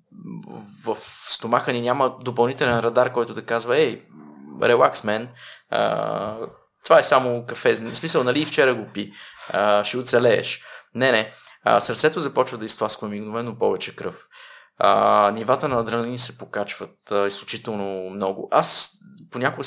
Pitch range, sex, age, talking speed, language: 110-135 Hz, male, 20-39, 140 wpm, Bulgarian